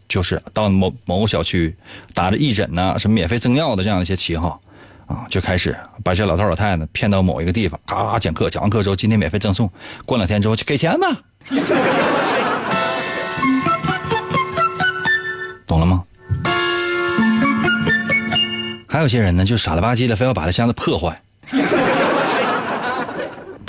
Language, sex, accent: Chinese, male, native